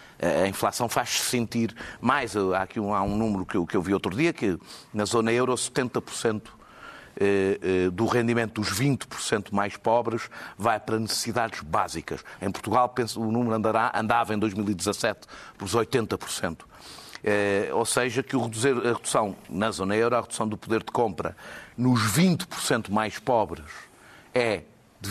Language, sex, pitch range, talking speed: Portuguese, male, 105-130 Hz, 150 wpm